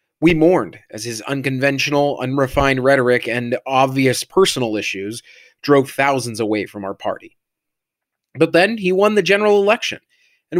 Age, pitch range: 30-49, 125-175 Hz